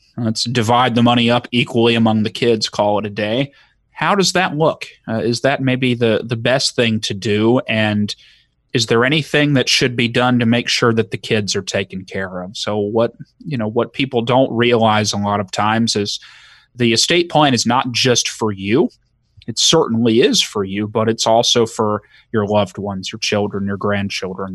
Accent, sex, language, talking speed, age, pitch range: American, male, English, 200 wpm, 30-49, 110-130 Hz